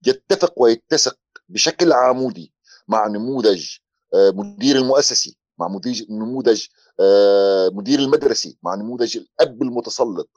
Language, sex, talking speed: Arabic, male, 100 wpm